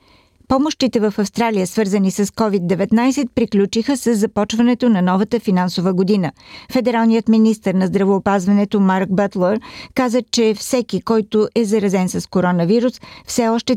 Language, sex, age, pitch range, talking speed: Bulgarian, female, 50-69, 195-230 Hz, 125 wpm